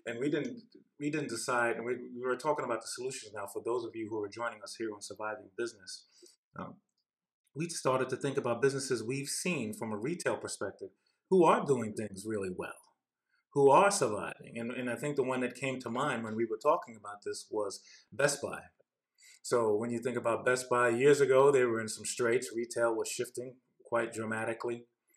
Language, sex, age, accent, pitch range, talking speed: English, male, 30-49, American, 115-175 Hz, 205 wpm